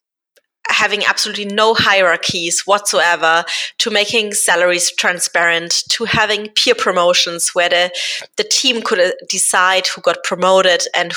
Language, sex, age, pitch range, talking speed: English, female, 20-39, 180-225 Hz, 125 wpm